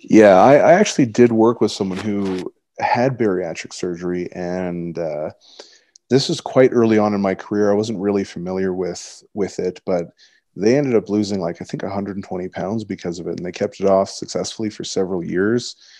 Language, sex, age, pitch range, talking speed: English, male, 30-49, 95-115 Hz, 190 wpm